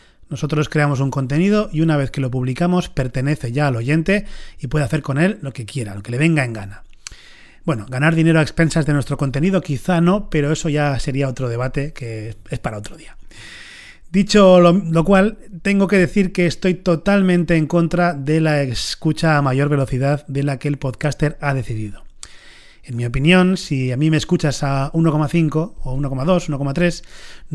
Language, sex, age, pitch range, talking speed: Spanish, male, 30-49, 140-165 Hz, 190 wpm